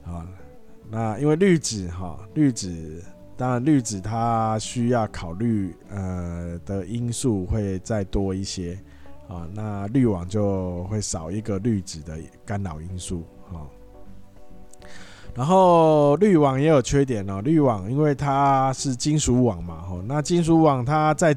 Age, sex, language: 20-39, male, Chinese